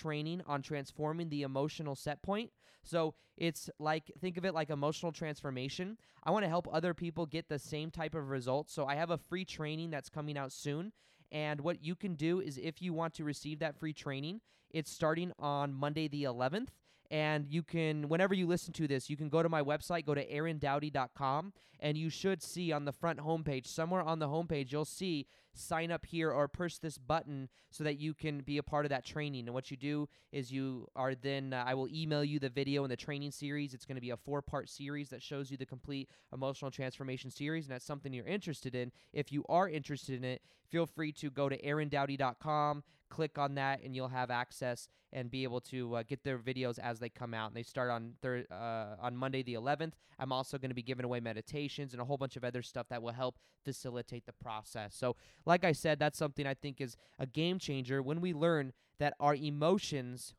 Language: English